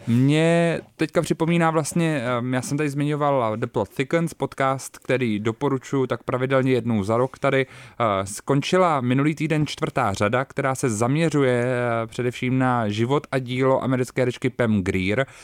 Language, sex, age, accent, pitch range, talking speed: Czech, male, 20-39, native, 105-130 Hz, 145 wpm